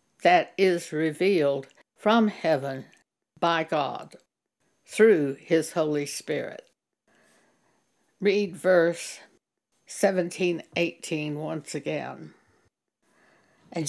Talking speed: 80 wpm